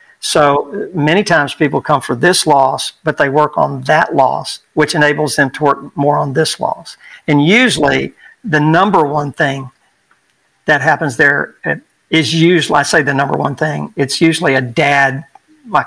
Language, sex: English, male